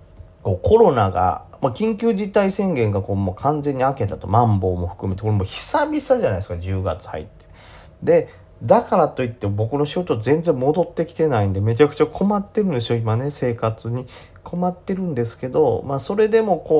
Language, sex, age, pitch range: Japanese, male, 40-59, 95-150 Hz